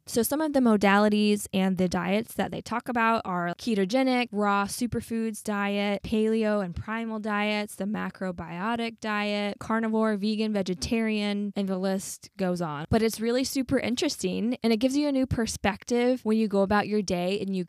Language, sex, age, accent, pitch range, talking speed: English, female, 10-29, American, 185-225 Hz, 175 wpm